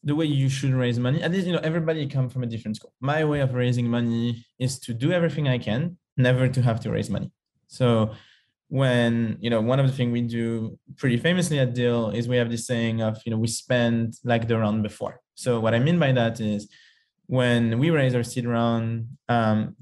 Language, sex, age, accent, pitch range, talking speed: English, male, 20-39, French, 115-135 Hz, 225 wpm